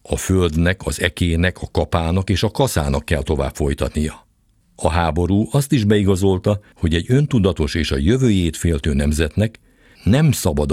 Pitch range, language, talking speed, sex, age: 80-105 Hz, Hungarian, 150 wpm, male, 60-79